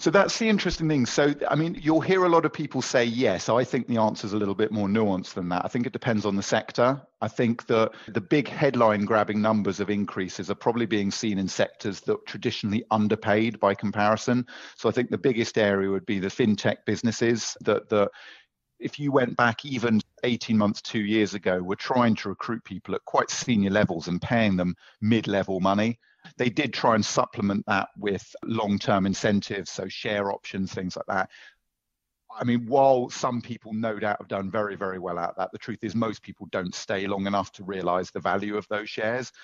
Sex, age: male, 40-59